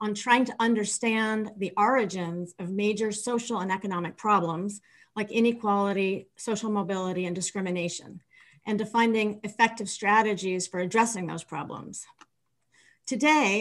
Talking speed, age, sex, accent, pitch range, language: 120 wpm, 40-59, female, American, 195-235 Hz, English